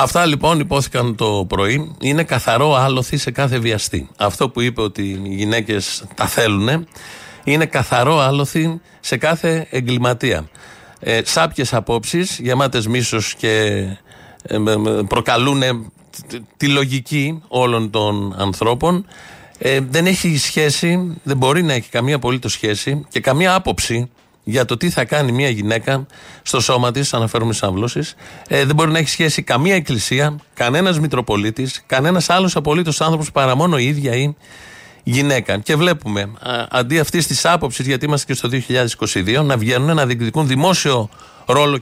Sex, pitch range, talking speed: male, 120-155 Hz, 145 wpm